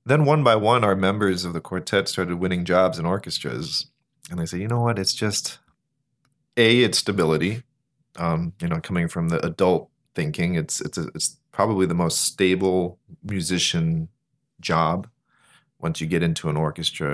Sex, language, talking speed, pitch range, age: male, English, 170 wpm, 85-105 Hz, 30-49